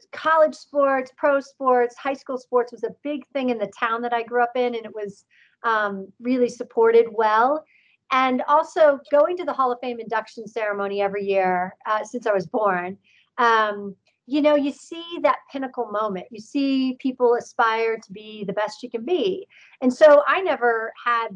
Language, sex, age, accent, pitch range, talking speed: English, female, 40-59, American, 215-260 Hz, 190 wpm